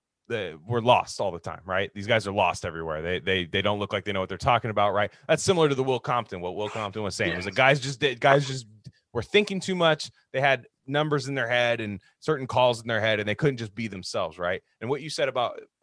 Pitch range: 105-140 Hz